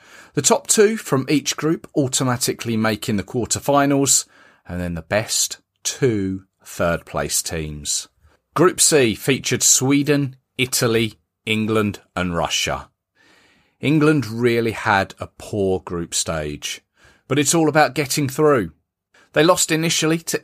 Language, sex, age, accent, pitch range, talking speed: English, male, 40-59, British, 95-145 Hz, 125 wpm